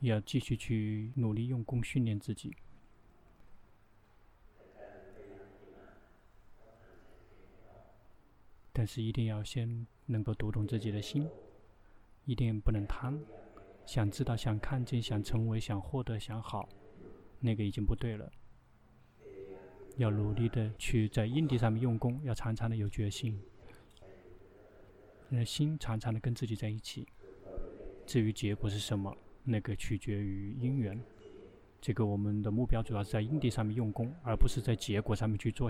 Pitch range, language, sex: 105-120 Hz, Chinese, male